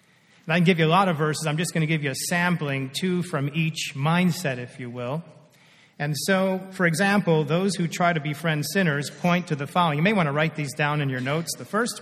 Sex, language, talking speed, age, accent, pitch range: male, English, 245 wpm, 40-59, American, 150-180 Hz